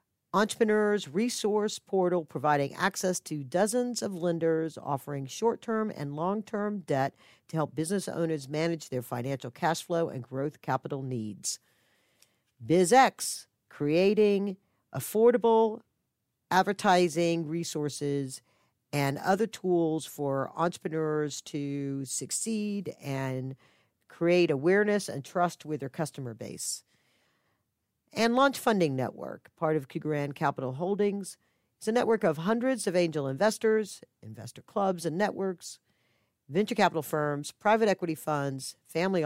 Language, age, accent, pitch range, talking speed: English, 50-69, American, 140-195 Hz, 115 wpm